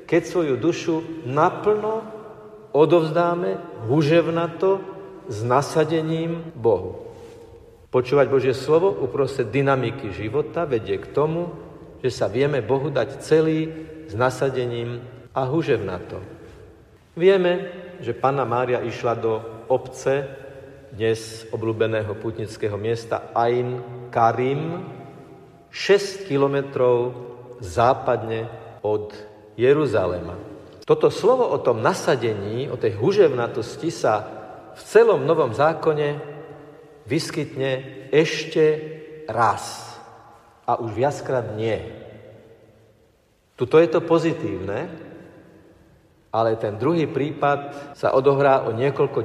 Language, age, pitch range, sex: Slovak, 50-69, 120-165 Hz, male